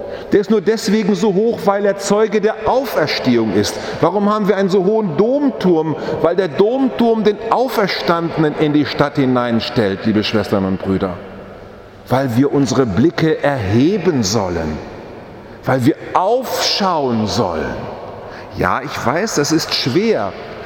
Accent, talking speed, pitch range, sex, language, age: German, 140 wpm, 125-175 Hz, male, German, 40-59